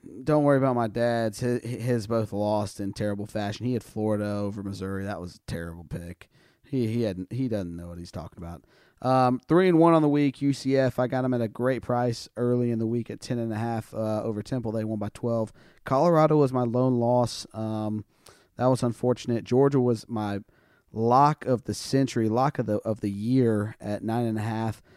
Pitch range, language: 110-130 Hz, English